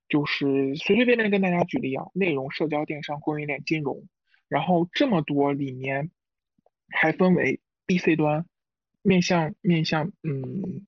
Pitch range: 145-180 Hz